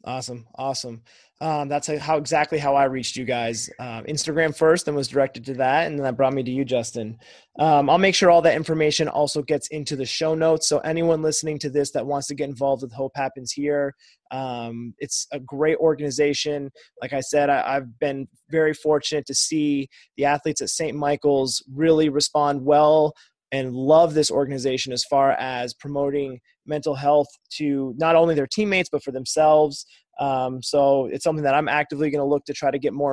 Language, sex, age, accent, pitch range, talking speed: English, male, 20-39, American, 135-160 Hz, 200 wpm